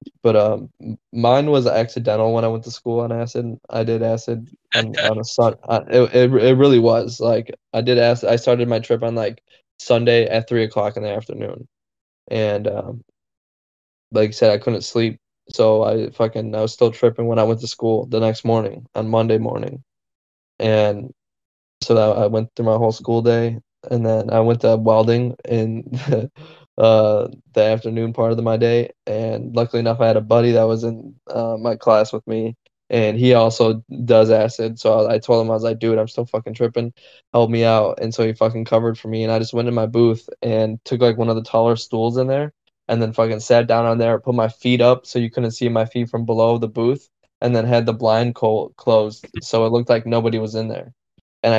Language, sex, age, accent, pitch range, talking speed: English, male, 10-29, American, 110-120 Hz, 220 wpm